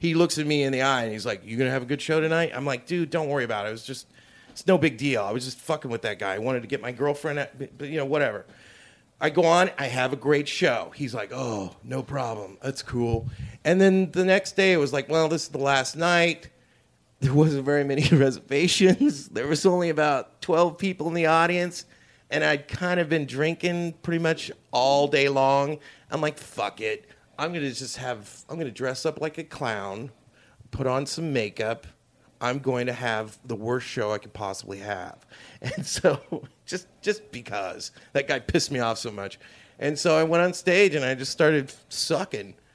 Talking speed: 225 wpm